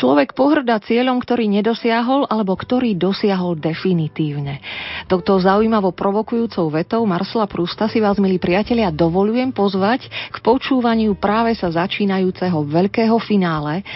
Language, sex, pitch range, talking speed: Slovak, female, 165-200 Hz, 120 wpm